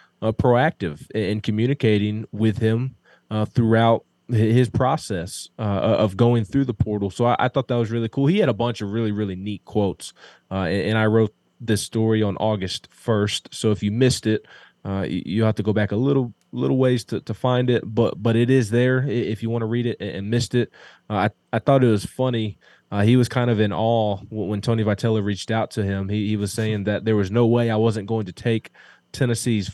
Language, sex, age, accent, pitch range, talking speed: English, male, 20-39, American, 105-120 Hz, 225 wpm